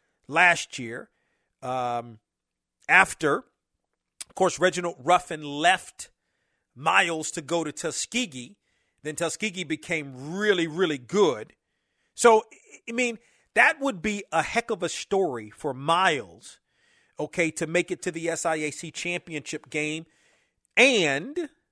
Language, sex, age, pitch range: English, male, 40-59, 150-190 Hz